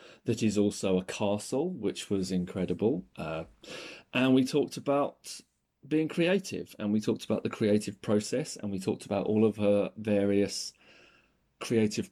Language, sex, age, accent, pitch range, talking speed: English, male, 40-59, British, 100-125 Hz, 155 wpm